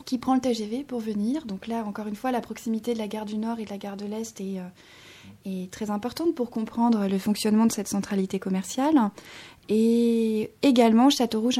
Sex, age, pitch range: female, 20-39, 205-245 Hz